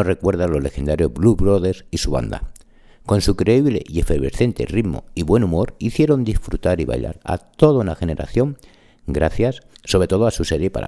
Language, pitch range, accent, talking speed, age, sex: Spanish, 75-110 Hz, Spanish, 180 wpm, 60-79, male